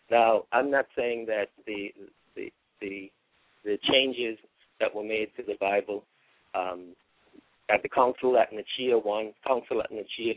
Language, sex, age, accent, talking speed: English, male, 50-69, American, 150 wpm